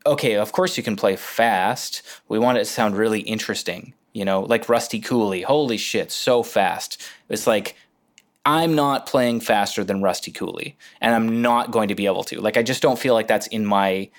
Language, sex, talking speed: English, male, 205 wpm